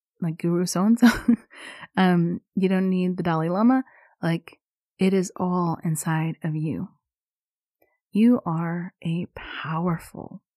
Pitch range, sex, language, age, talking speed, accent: 170-225 Hz, female, English, 30-49, 120 wpm, American